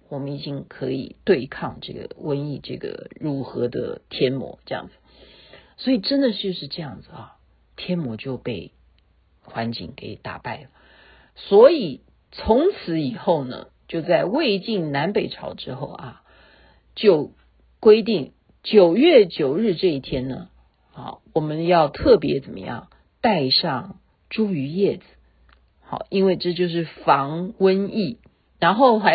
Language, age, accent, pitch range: Chinese, 50-69, native, 155-220 Hz